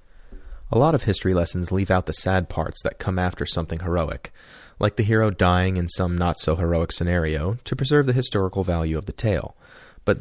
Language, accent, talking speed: English, American, 190 wpm